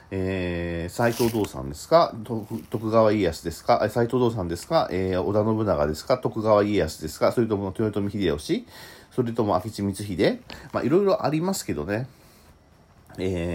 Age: 40-59